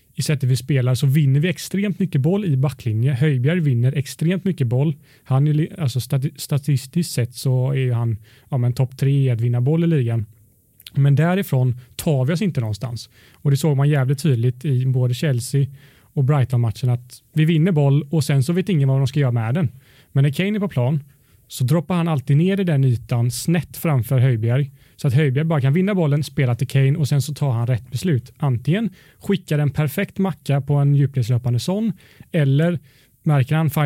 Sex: male